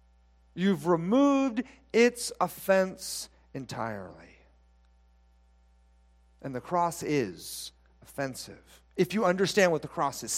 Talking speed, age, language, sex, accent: 100 wpm, 40-59, English, male, American